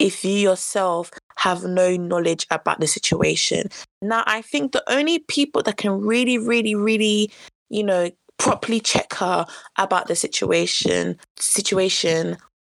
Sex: female